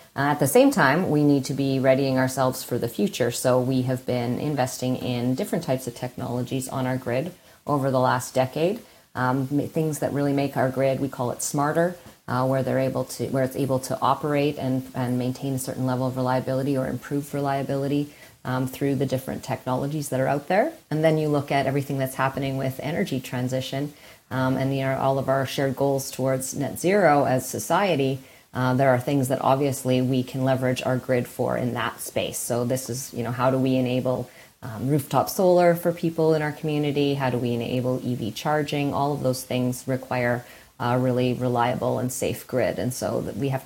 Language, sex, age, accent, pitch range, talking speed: English, female, 30-49, American, 125-140 Hz, 205 wpm